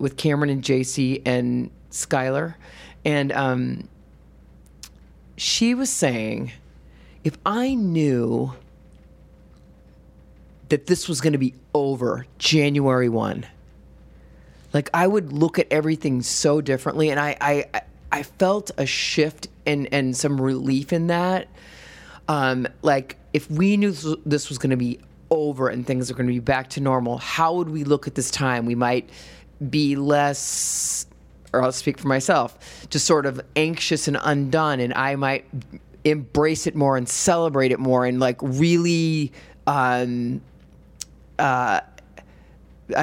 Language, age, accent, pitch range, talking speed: English, 30-49, American, 125-150 Hz, 140 wpm